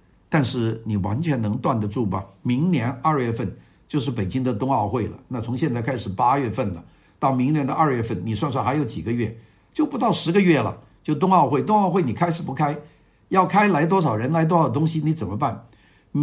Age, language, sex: 50-69, Chinese, male